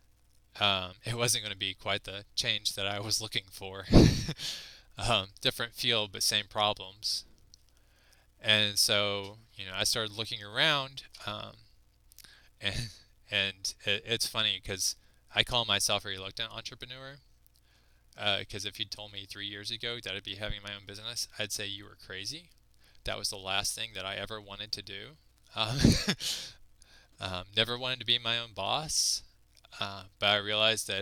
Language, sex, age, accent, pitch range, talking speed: English, male, 20-39, American, 100-110 Hz, 170 wpm